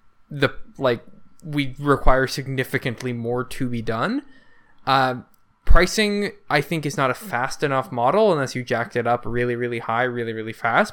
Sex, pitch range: male, 120-150 Hz